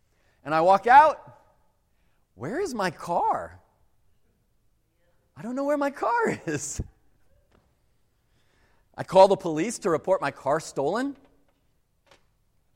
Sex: male